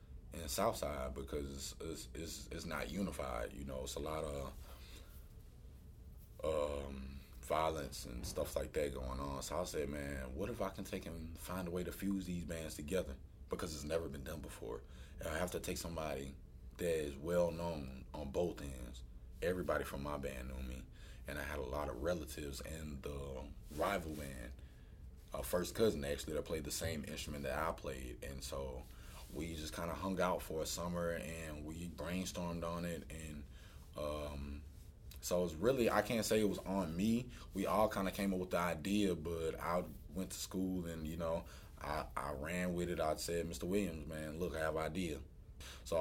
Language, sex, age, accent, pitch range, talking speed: English, male, 30-49, American, 70-90 Hz, 195 wpm